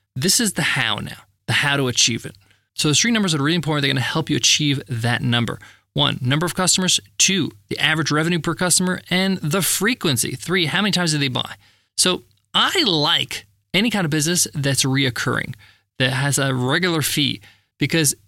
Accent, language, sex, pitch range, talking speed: American, English, male, 125-175 Hz, 195 wpm